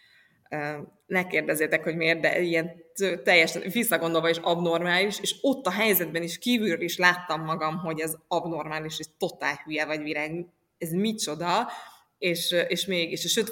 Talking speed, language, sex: 140 wpm, Hungarian, female